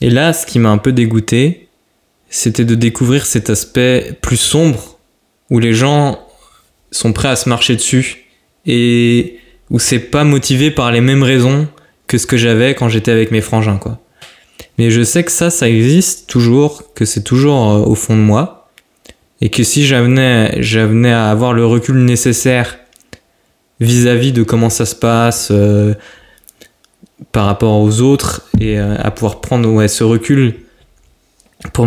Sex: male